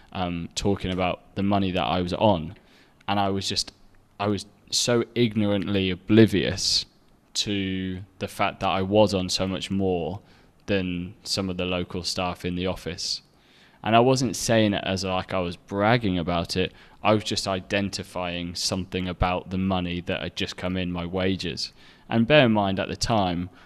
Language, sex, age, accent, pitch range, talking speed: English, male, 20-39, British, 90-105 Hz, 180 wpm